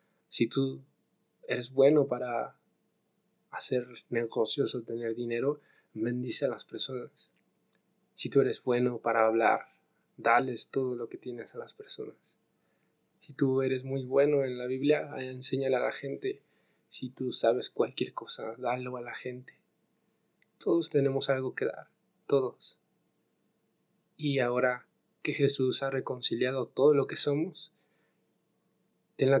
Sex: male